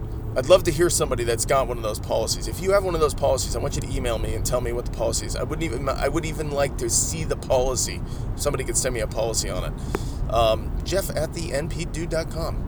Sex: male